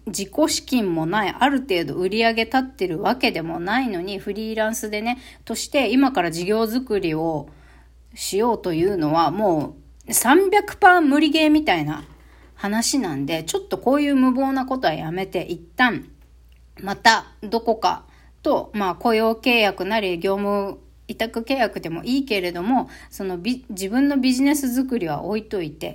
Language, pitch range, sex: Japanese, 195-275 Hz, female